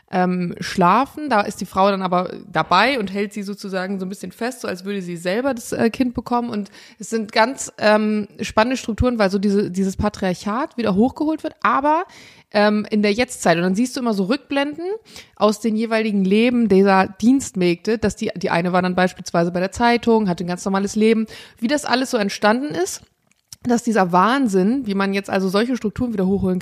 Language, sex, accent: German, female, German